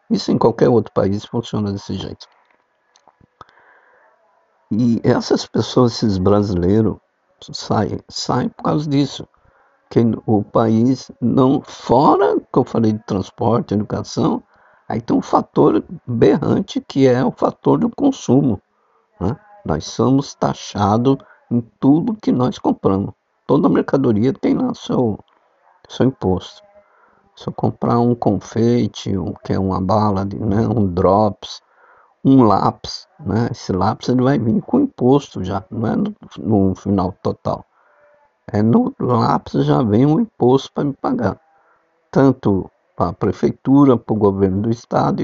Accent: Brazilian